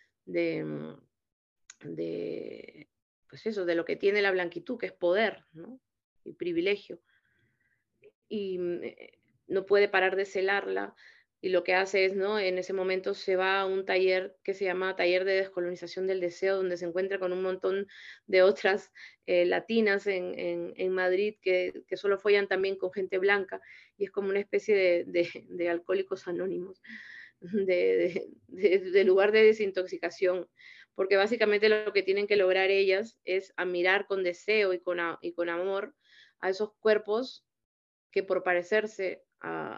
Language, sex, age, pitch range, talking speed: Spanish, female, 20-39, 180-205 Hz, 165 wpm